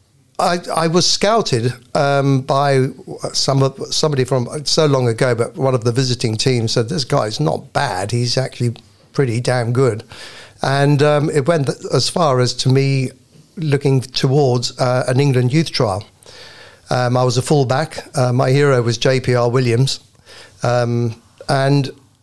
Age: 50-69